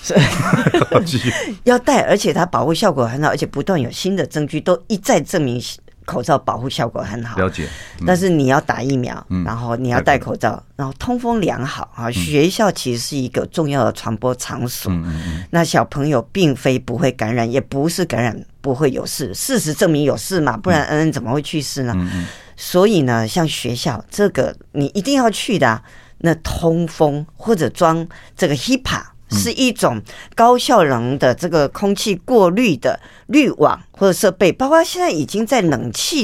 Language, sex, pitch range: Chinese, female, 120-190 Hz